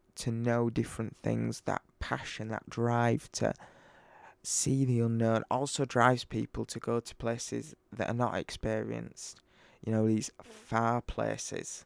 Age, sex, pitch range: 20-39, male, 110-120 Hz